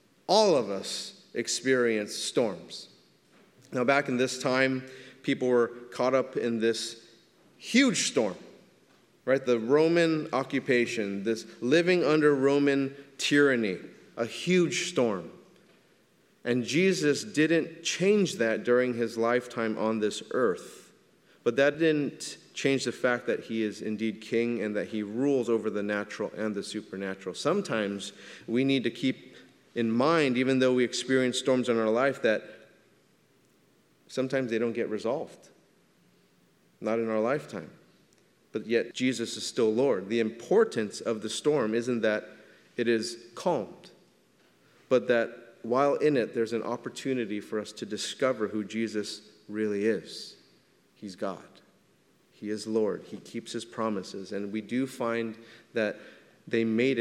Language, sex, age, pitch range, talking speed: English, male, 30-49, 110-130 Hz, 140 wpm